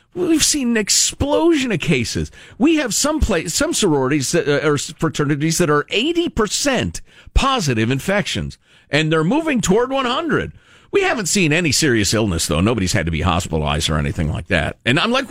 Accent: American